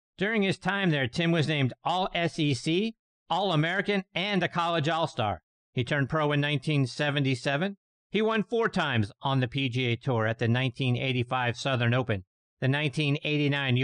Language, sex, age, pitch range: English, male, 50-69, 125-170 Hz